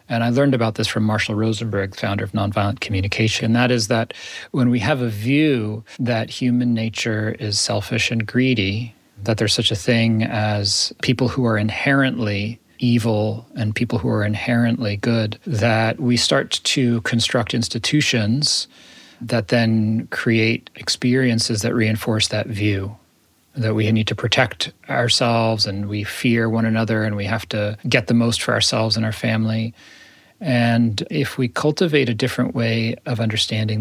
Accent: American